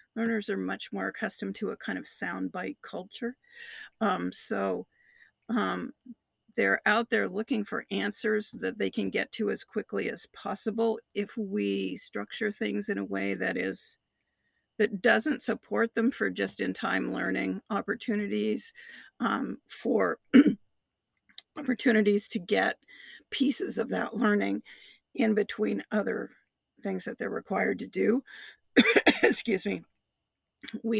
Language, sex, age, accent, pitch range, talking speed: English, female, 50-69, American, 210-255 Hz, 135 wpm